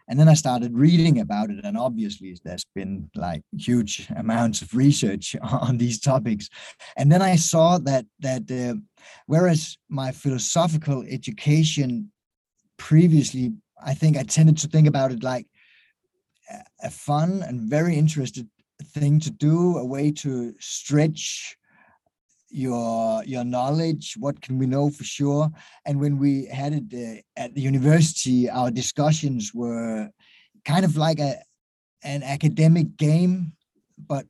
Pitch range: 125-160 Hz